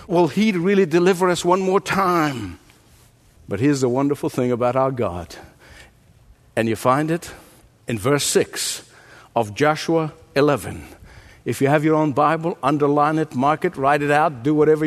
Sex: male